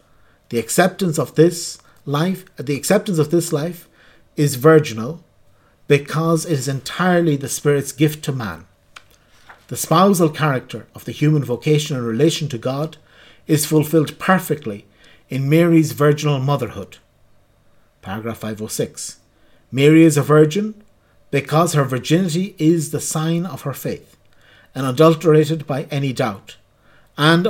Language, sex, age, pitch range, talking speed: English, male, 50-69, 115-155 Hz, 135 wpm